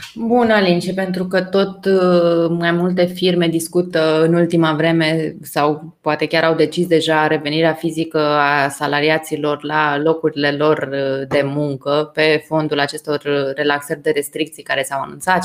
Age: 20-39